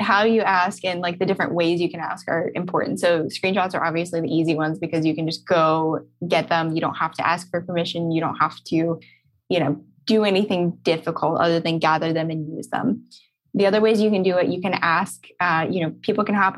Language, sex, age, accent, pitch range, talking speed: English, female, 10-29, American, 165-195 Hz, 240 wpm